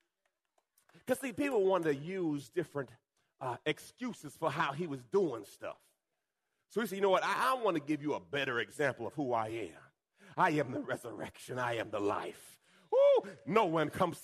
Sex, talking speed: male, 195 wpm